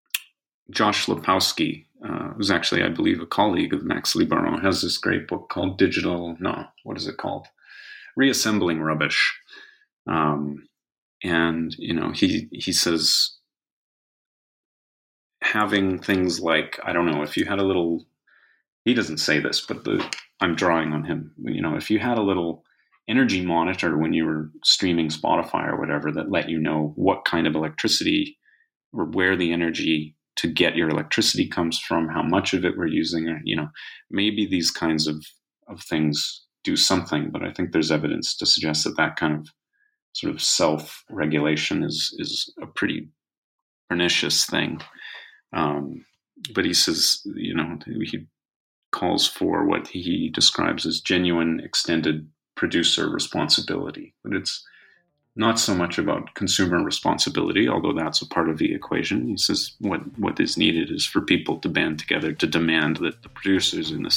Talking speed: 165 wpm